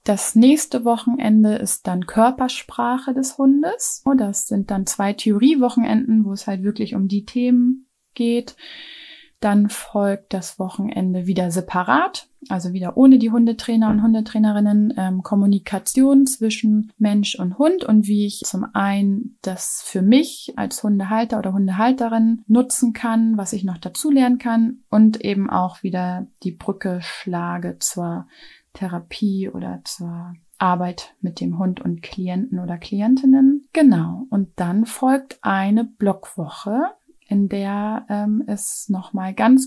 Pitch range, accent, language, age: 195-240 Hz, German, German, 20-39